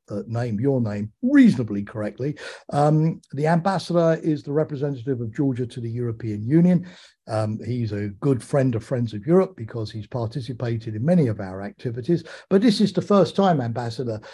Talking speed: 170 wpm